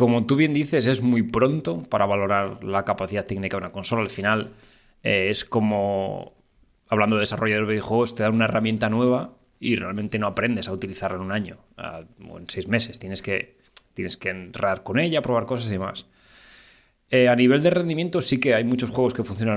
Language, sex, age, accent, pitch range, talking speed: Spanish, male, 20-39, Spanish, 100-125 Hz, 200 wpm